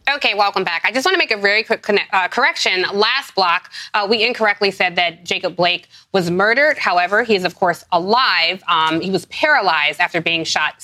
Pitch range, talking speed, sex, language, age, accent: 180-230 Hz, 205 wpm, female, English, 20-39, American